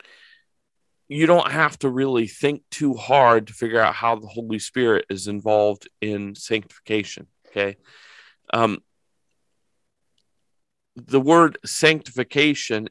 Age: 40-59